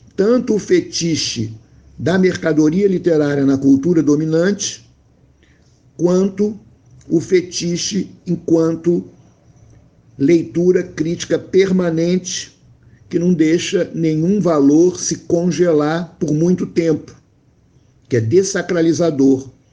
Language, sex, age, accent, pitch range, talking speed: Portuguese, male, 60-79, Brazilian, 130-170 Hz, 90 wpm